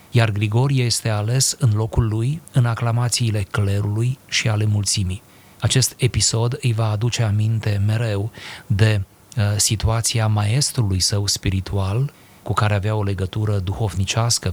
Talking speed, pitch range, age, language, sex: 130 wpm, 100-120 Hz, 30-49, Romanian, male